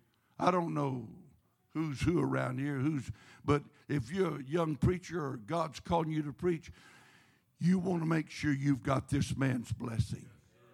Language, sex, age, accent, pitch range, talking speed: English, male, 60-79, American, 130-175 Hz, 170 wpm